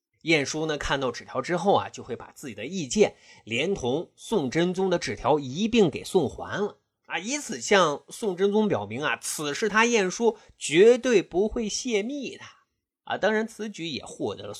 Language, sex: Chinese, male